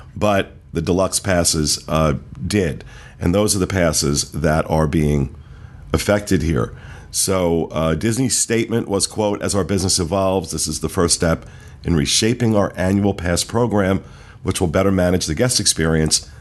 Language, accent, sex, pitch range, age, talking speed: English, American, male, 80-100 Hz, 50-69, 160 wpm